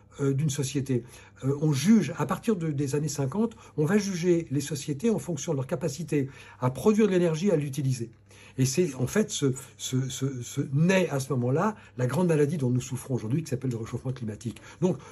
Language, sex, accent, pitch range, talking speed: French, male, French, 120-160 Hz, 210 wpm